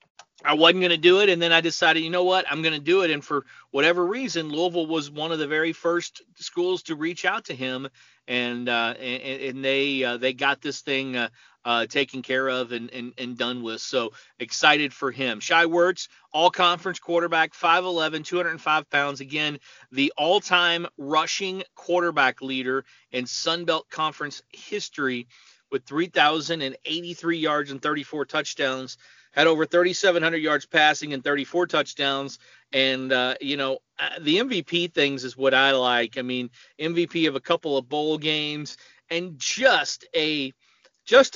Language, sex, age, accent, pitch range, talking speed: English, male, 40-59, American, 135-170 Hz, 175 wpm